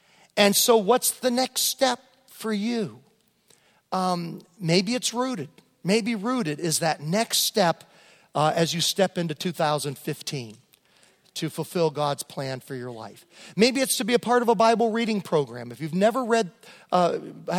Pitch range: 160-220 Hz